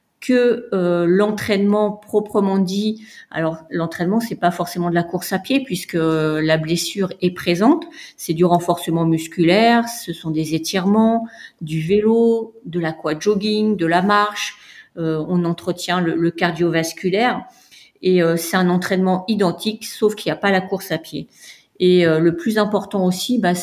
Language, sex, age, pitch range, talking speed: French, female, 40-59, 165-205 Hz, 165 wpm